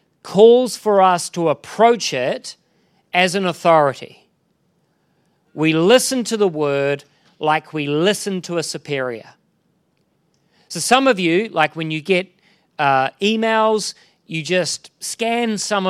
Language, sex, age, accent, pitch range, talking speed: English, male, 40-59, Australian, 155-205 Hz, 130 wpm